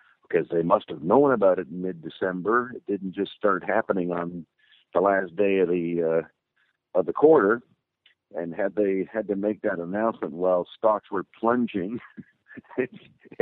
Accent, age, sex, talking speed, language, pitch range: American, 50-69, male, 165 wpm, English, 90-105 Hz